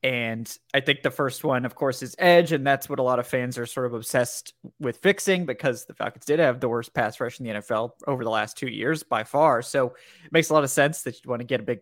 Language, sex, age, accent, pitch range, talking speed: English, male, 20-39, American, 125-160 Hz, 285 wpm